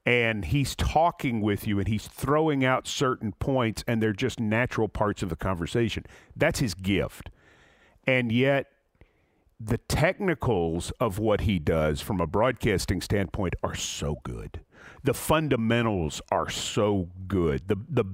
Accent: American